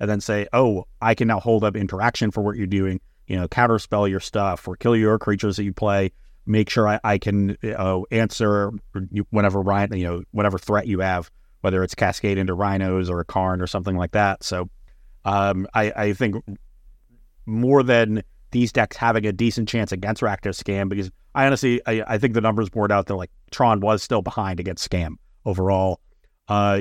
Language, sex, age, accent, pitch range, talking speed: English, male, 30-49, American, 95-110 Hz, 200 wpm